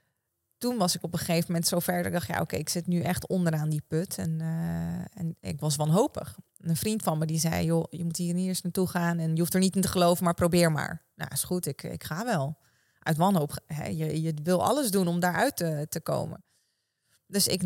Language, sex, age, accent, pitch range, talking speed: Dutch, female, 20-39, Dutch, 155-180 Hz, 255 wpm